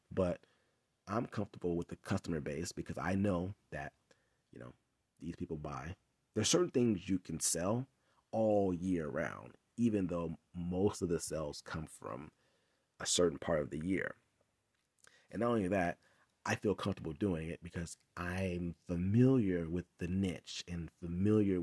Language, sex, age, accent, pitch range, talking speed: English, male, 30-49, American, 85-100 Hz, 155 wpm